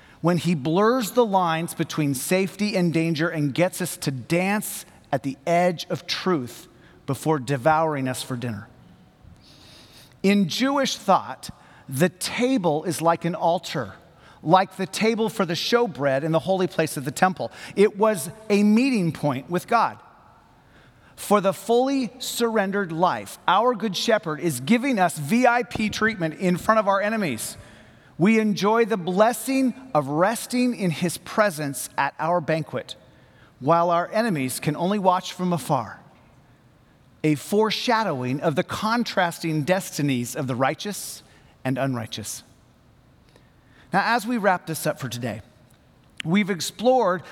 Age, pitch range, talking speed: 40-59, 145-210 Hz, 140 wpm